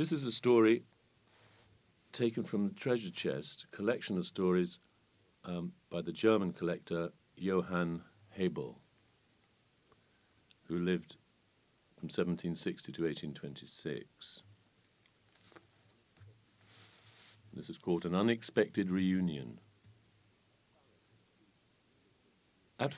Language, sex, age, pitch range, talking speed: English, male, 50-69, 90-120 Hz, 85 wpm